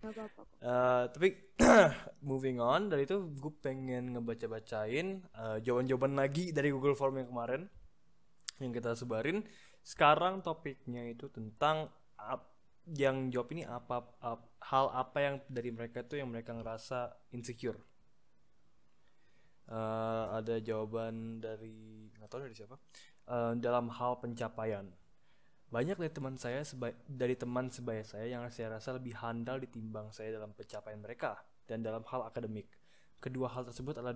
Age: 20-39